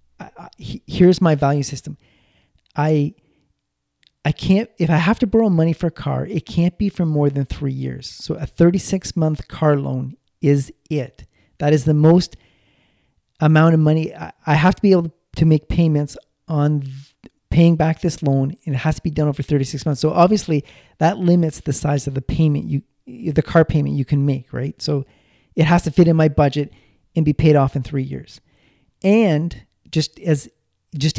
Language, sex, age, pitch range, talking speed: English, male, 40-59, 140-170 Hz, 190 wpm